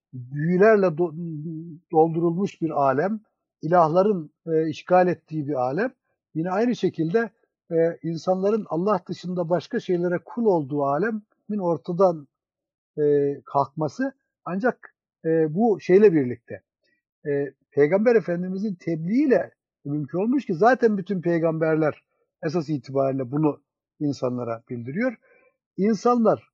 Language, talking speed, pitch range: Turkish, 105 wpm, 155-210 Hz